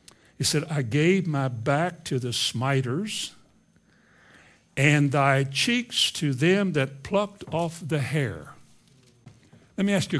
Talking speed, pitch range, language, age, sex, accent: 135 wpm, 135-175 Hz, English, 60-79, male, American